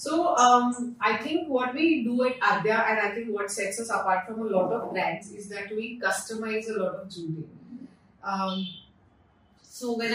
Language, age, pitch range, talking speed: English, 30-49, 185-225 Hz, 190 wpm